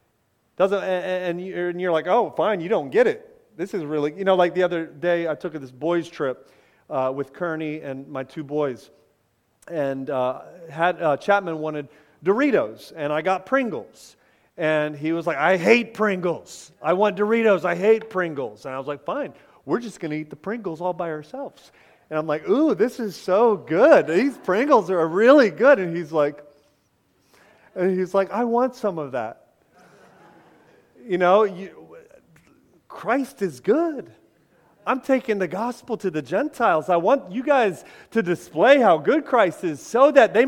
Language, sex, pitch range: English, male, 165-250 Hz